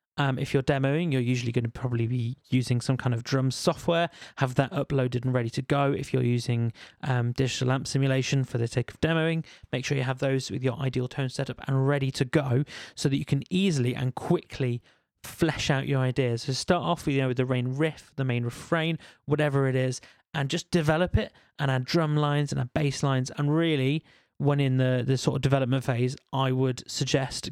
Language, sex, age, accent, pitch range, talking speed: English, male, 30-49, British, 130-150 Hz, 220 wpm